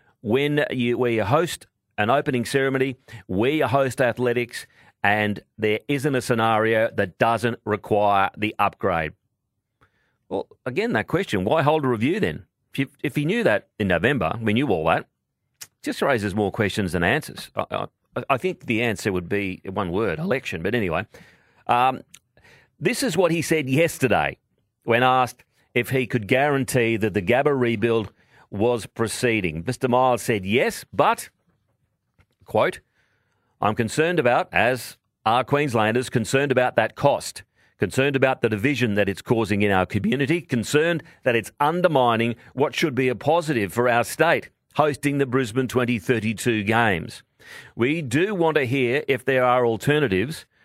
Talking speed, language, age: 155 wpm, English, 40-59